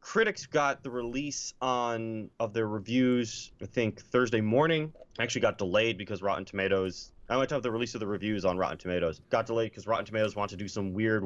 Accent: American